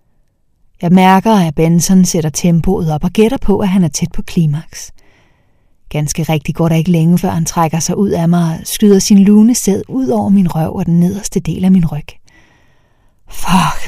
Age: 30-49